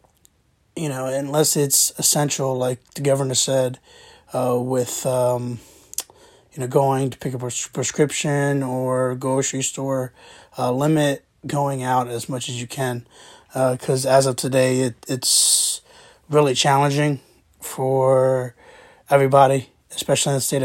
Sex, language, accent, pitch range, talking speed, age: male, English, American, 125-145 Hz, 135 wpm, 20-39